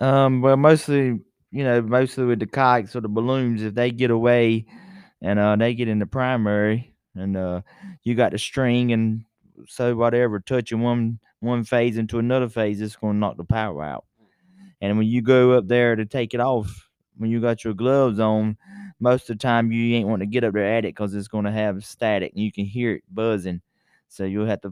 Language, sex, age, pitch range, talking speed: English, male, 20-39, 100-120 Hz, 220 wpm